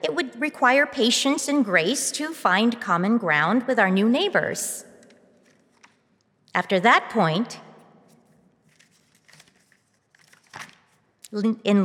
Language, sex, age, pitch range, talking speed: English, female, 40-59, 190-240 Hz, 90 wpm